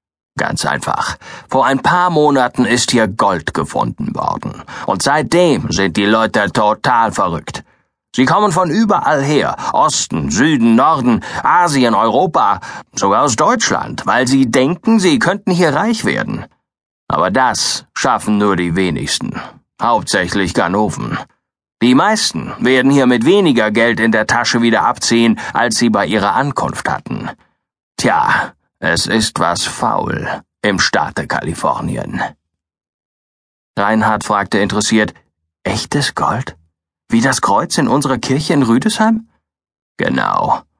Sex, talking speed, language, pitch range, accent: male, 130 wpm, German, 105-135 Hz, German